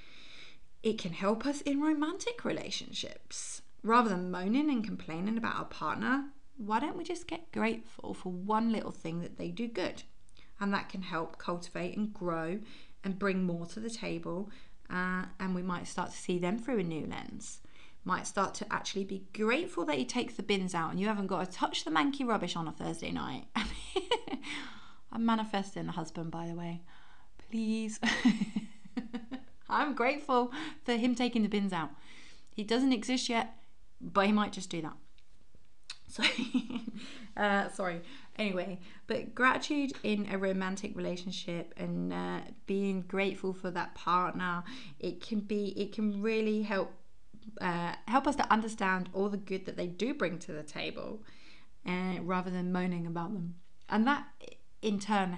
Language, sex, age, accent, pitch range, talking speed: English, female, 20-39, British, 180-230 Hz, 165 wpm